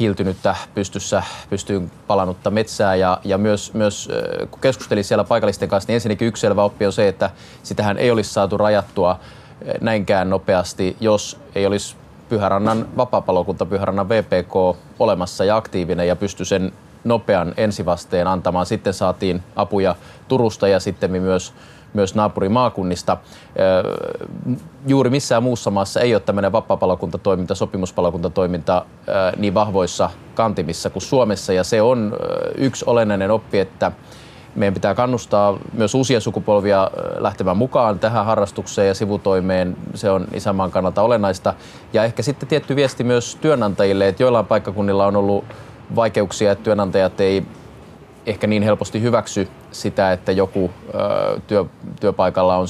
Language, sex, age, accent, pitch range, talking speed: Finnish, male, 20-39, native, 95-110 Hz, 135 wpm